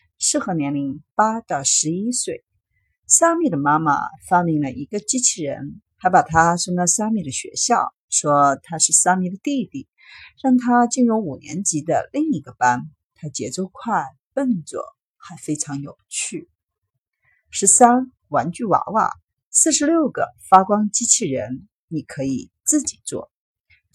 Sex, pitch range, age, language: female, 145-245 Hz, 50-69, Chinese